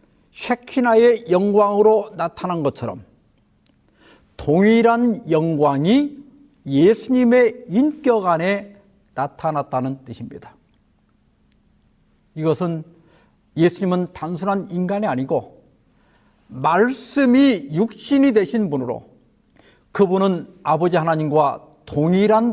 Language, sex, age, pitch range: Korean, male, 50-69, 155-215 Hz